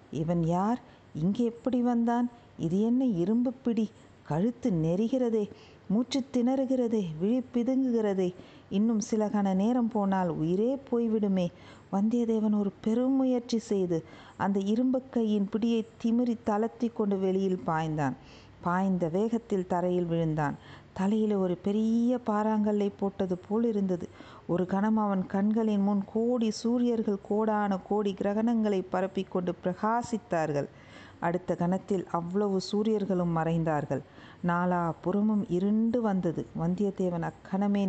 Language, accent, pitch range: Tamil, native, 175-220 Hz